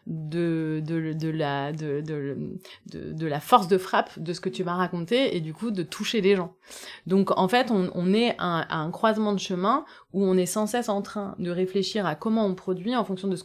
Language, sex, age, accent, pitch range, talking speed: French, female, 30-49, French, 175-215 Hz, 235 wpm